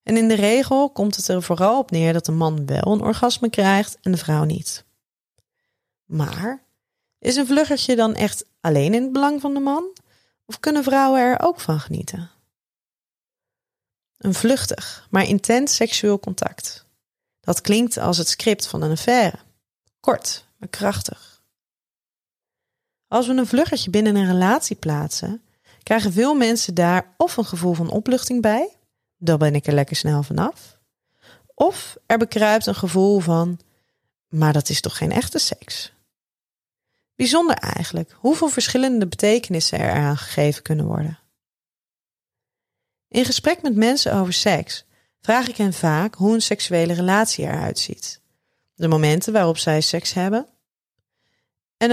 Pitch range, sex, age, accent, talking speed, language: 165-245 Hz, female, 30-49, Dutch, 150 wpm, Dutch